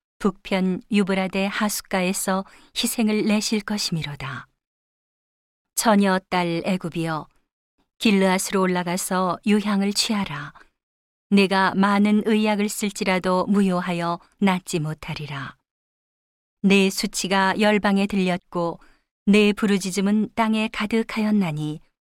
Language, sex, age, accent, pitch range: Korean, female, 40-59, native, 185-210 Hz